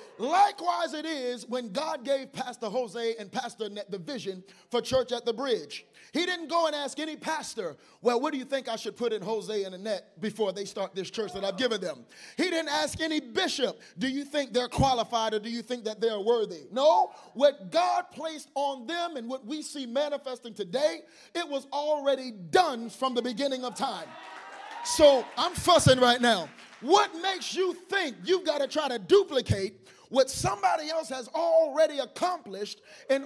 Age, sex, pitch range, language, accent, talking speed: 30-49, male, 240-340 Hz, English, American, 190 wpm